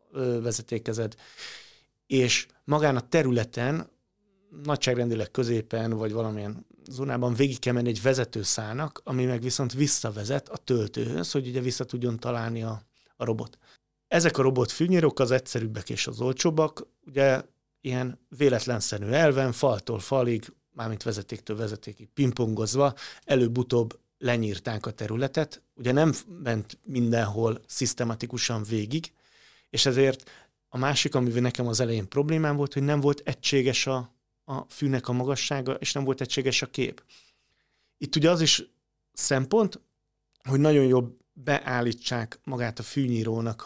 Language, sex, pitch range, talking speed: Hungarian, male, 115-140 Hz, 130 wpm